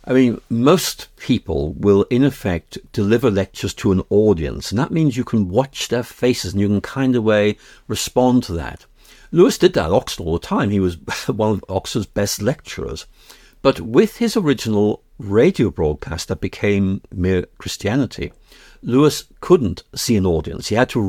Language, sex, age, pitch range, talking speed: English, male, 60-79, 100-135 Hz, 175 wpm